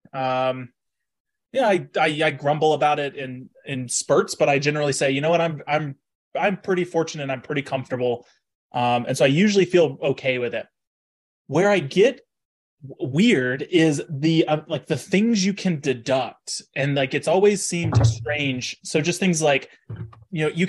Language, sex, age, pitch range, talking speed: English, male, 20-39, 135-180 Hz, 175 wpm